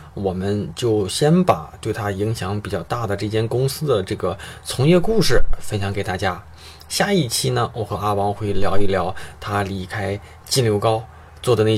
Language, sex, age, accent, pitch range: Chinese, male, 20-39, native, 95-115 Hz